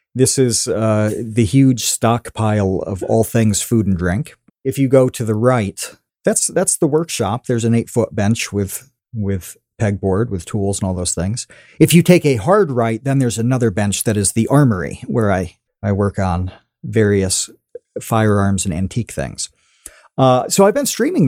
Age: 40-59